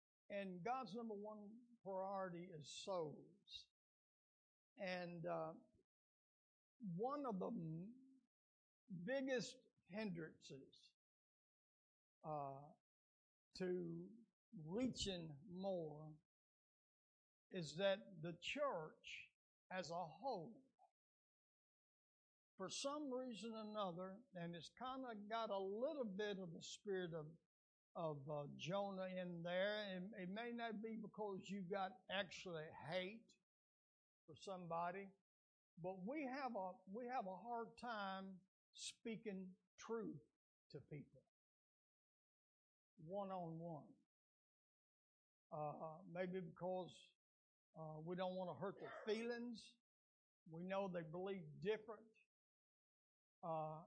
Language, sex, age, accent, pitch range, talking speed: English, male, 60-79, American, 175-230 Hz, 105 wpm